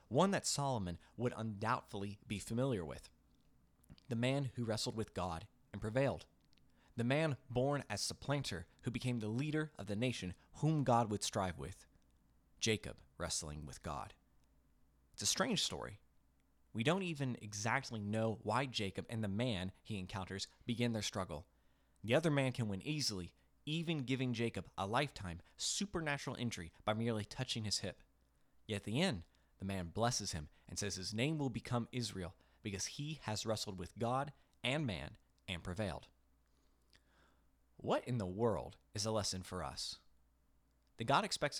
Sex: male